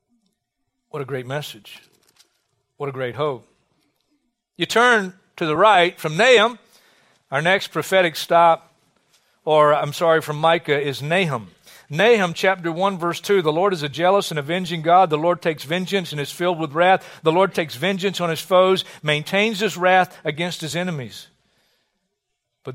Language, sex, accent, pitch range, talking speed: English, male, American, 145-190 Hz, 165 wpm